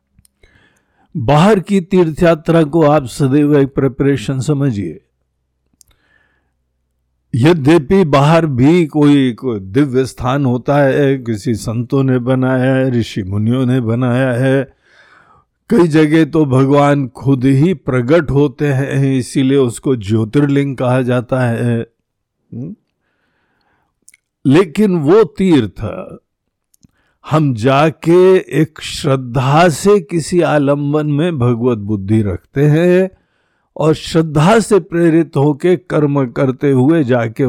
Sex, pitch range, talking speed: male, 120-160 Hz, 105 wpm